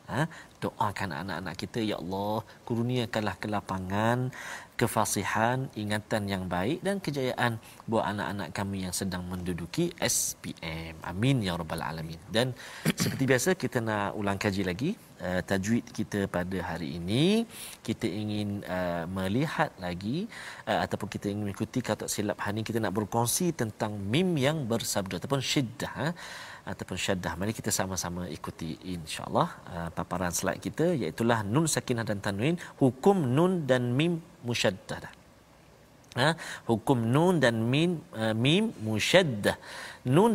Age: 40-59